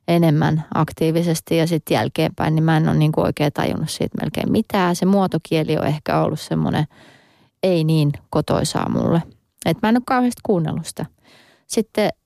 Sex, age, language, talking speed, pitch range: female, 20-39, Finnish, 160 wpm, 150-180 Hz